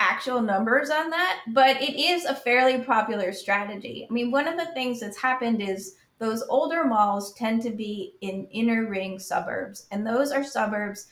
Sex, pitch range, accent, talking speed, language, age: female, 195-255 Hz, American, 185 wpm, English, 30-49